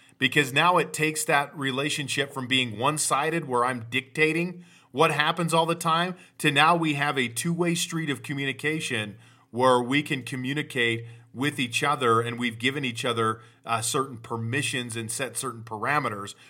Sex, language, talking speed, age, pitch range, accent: male, English, 165 wpm, 40-59, 130-165 Hz, American